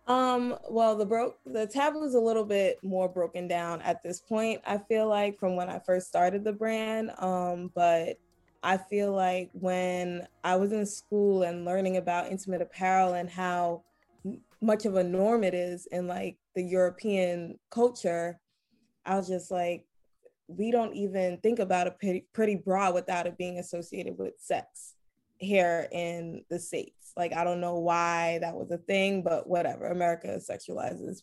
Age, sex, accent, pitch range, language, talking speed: 20-39, female, American, 175-210 Hz, English, 175 wpm